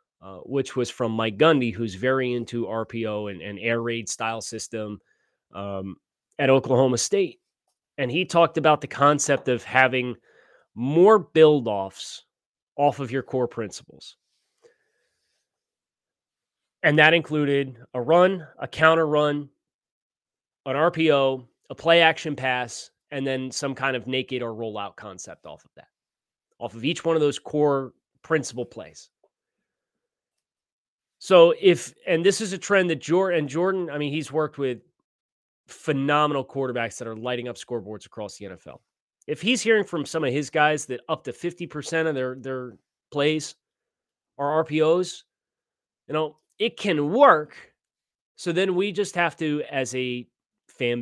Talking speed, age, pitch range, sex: 150 wpm, 30-49, 125-160 Hz, male